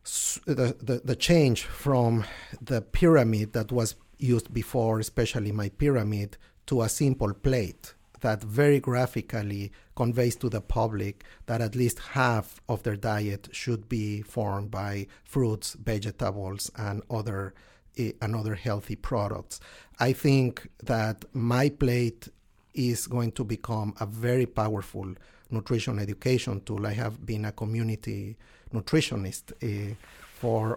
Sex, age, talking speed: male, 50-69, 135 wpm